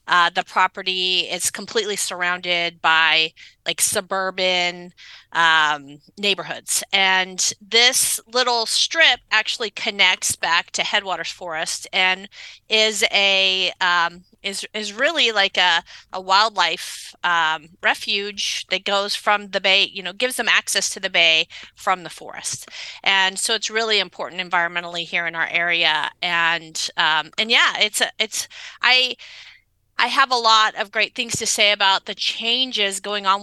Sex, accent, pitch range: female, American, 180-220 Hz